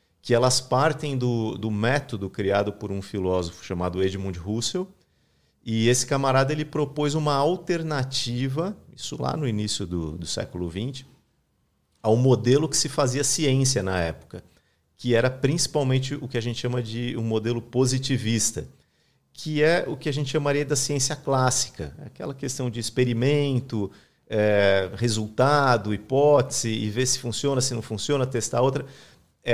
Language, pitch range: Portuguese, 100-140 Hz